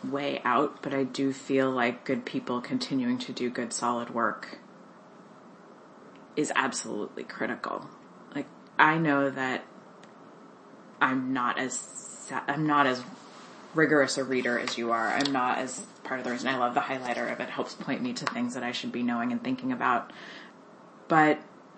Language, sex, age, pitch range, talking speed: English, female, 20-39, 125-145 Hz, 170 wpm